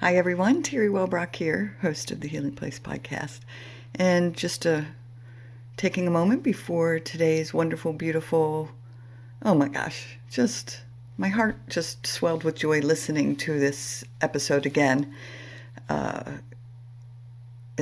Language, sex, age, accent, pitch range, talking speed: English, female, 60-79, American, 125-160 Hz, 125 wpm